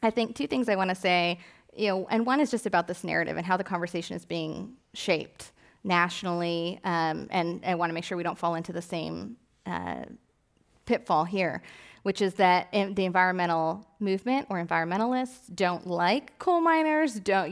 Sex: female